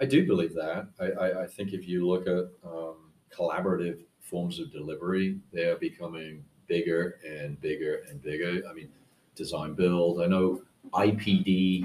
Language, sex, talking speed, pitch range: English, male, 160 wpm, 85-115 Hz